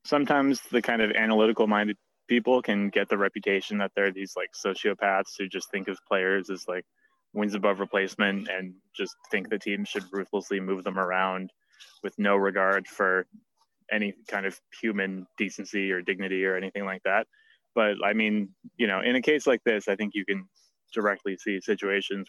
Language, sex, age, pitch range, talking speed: English, male, 20-39, 95-110 Hz, 185 wpm